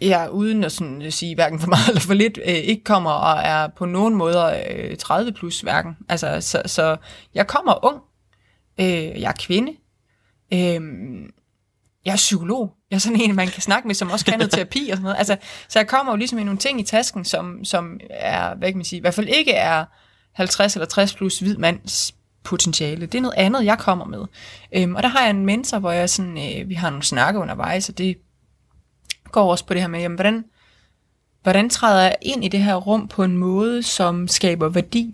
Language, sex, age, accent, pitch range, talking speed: Danish, female, 20-39, native, 170-205 Hz, 215 wpm